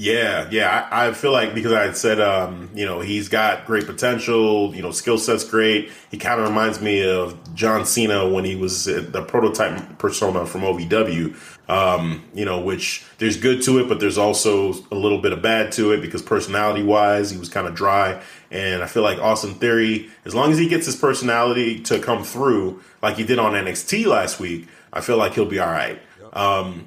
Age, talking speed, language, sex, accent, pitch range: 30-49, 210 wpm, English, male, American, 95-110 Hz